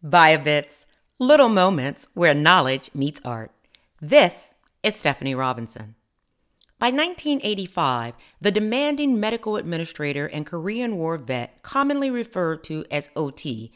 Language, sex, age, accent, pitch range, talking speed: English, female, 40-59, American, 145-225 Hz, 115 wpm